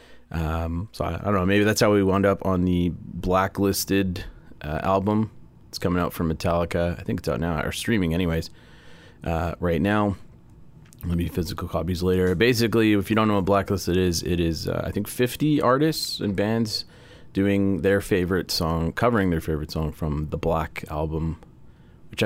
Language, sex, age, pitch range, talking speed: English, male, 30-49, 85-105 Hz, 180 wpm